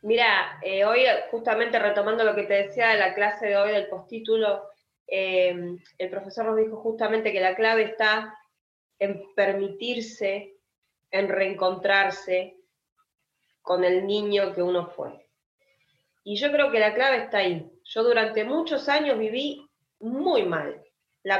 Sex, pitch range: female, 190-240 Hz